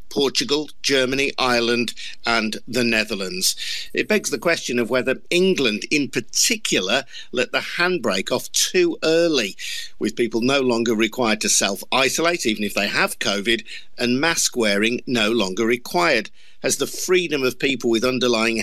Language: English